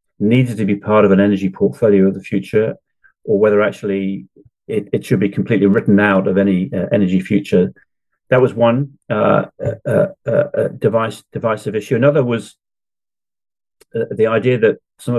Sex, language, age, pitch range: male, English, 40-59, 100-125 Hz